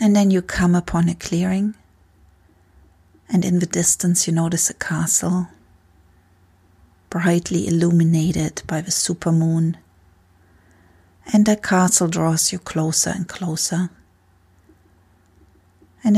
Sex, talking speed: female, 110 wpm